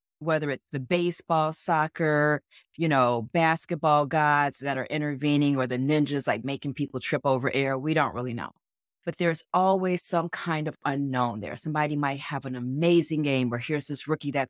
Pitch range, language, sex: 135-175 Hz, English, female